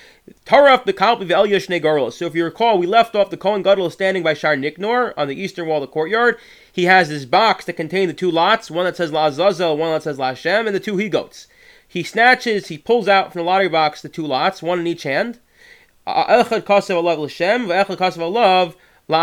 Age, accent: 30-49, American